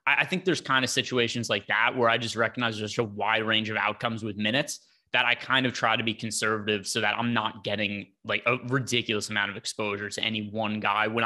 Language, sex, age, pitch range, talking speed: English, male, 20-39, 110-130 Hz, 235 wpm